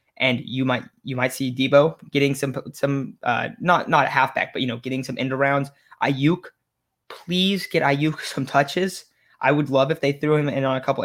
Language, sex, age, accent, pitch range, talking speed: English, male, 20-39, American, 130-155 Hz, 210 wpm